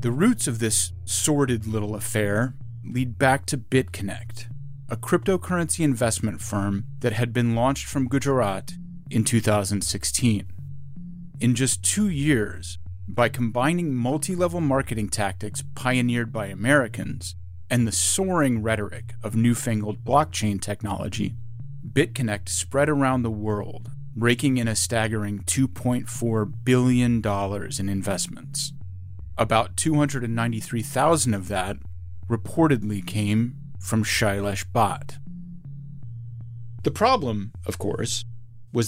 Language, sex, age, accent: English, male, 30-49, American